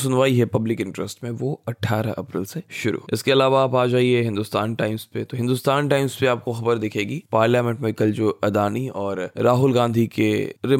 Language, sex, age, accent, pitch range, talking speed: Hindi, male, 20-39, native, 105-125 Hz, 110 wpm